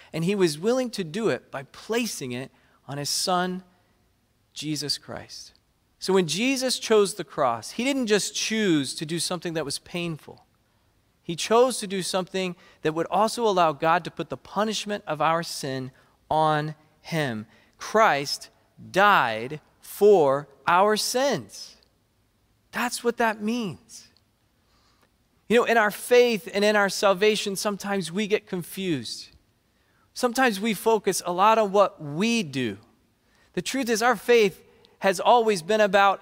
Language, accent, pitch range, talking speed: English, American, 155-225 Hz, 150 wpm